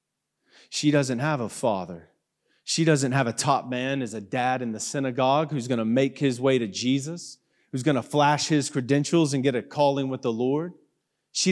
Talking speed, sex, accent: 205 wpm, male, American